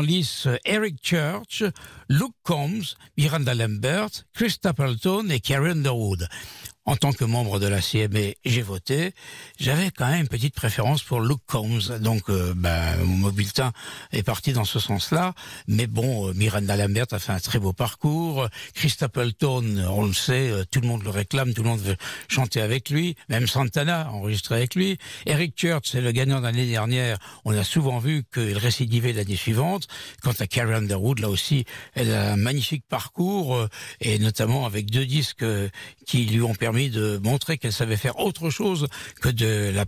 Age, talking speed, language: 60-79, 175 wpm, French